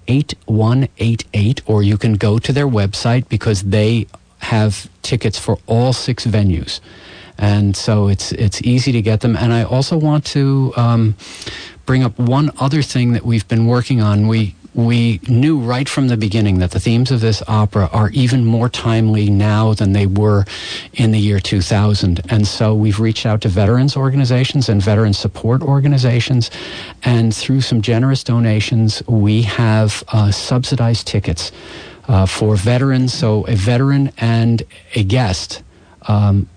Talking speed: 160 wpm